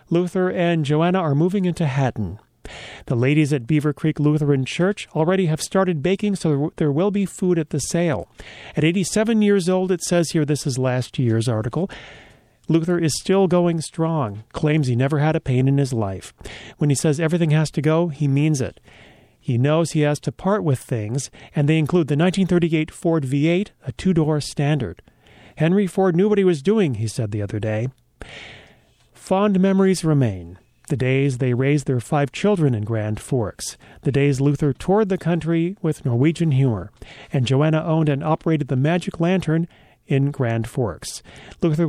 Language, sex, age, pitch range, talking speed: English, male, 40-59, 135-175 Hz, 180 wpm